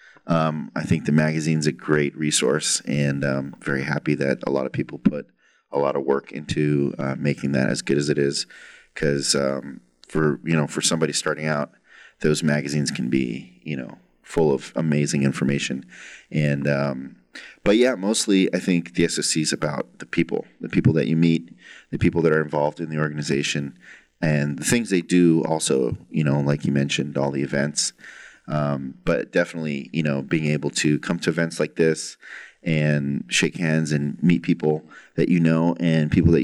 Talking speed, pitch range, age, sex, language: 190 wpm, 70-85 Hz, 30-49, male, English